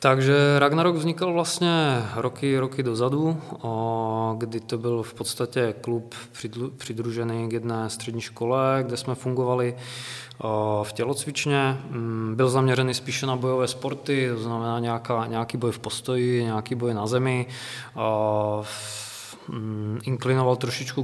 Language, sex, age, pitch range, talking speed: Czech, male, 20-39, 110-125 Hz, 125 wpm